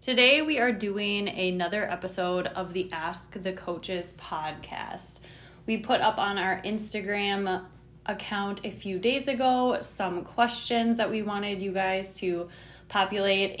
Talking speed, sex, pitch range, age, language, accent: 140 wpm, female, 180-230 Hz, 20-39, English, American